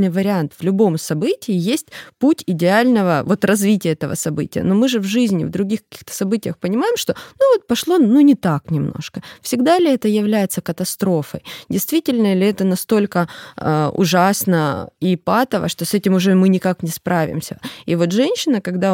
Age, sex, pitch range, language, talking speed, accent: 20-39, female, 165-220 Hz, Russian, 175 wpm, native